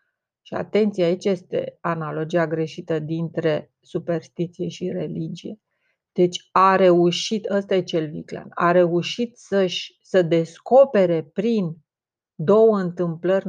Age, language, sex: 30-49, Romanian, female